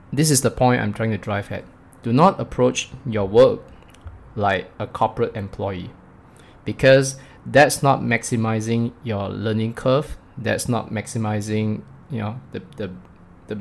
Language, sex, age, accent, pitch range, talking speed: English, male, 20-39, Malaysian, 105-130 Hz, 145 wpm